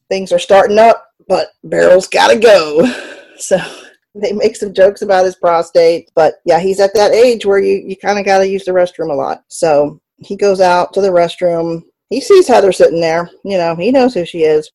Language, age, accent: English, 40-59, American